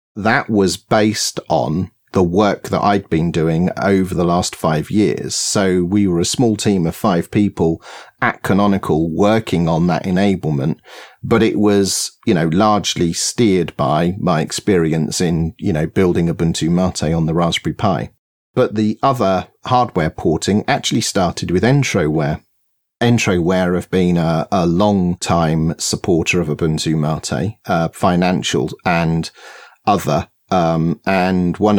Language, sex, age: English, male, 40-59